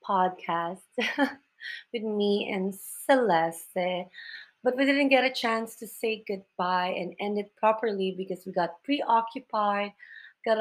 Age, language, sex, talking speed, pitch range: 20-39, English, female, 130 wpm, 190-255 Hz